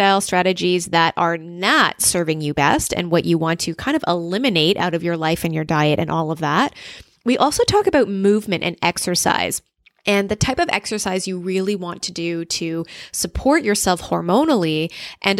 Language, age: English, 20-39